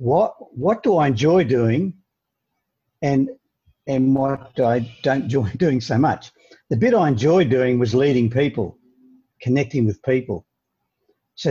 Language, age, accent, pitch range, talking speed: English, 50-69, Australian, 120-155 Hz, 140 wpm